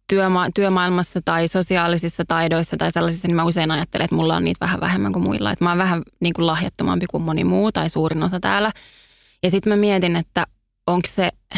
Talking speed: 205 wpm